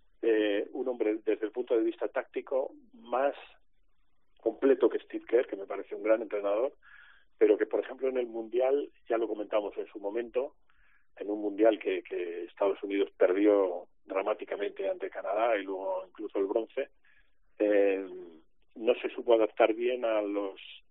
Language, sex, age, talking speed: Spanish, male, 40-59, 165 wpm